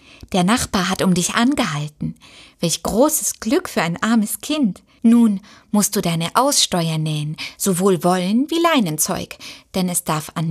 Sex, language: female, German